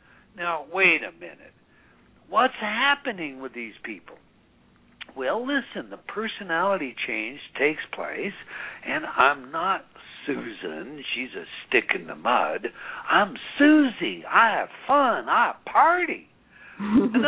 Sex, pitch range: male, 180-270 Hz